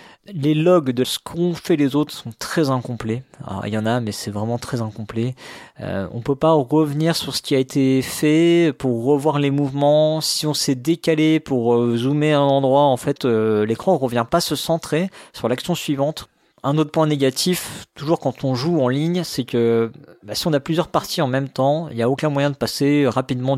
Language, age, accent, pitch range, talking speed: French, 40-59, French, 115-150 Hz, 220 wpm